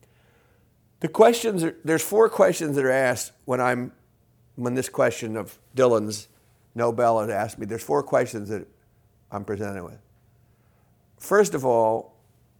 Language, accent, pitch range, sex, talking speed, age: English, American, 110-135 Hz, male, 145 wpm, 50-69